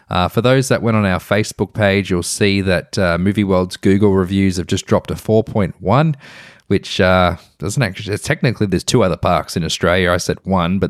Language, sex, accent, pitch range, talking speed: English, male, Australian, 90-115 Hz, 210 wpm